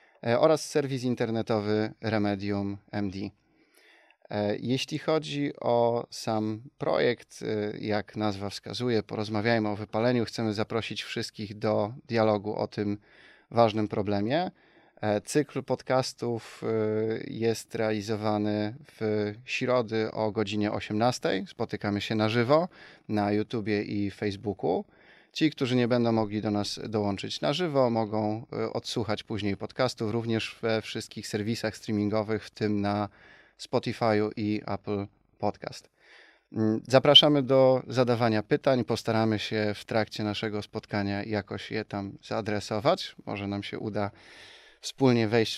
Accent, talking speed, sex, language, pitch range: native, 115 wpm, male, Polish, 105-120 Hz